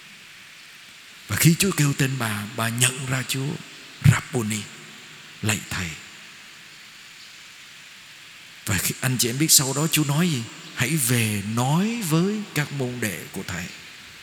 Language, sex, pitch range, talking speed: Vietnamese, male, 125-170 Hz, 135 wpm